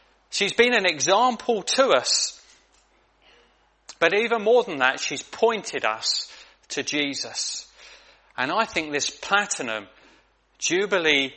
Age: 30-49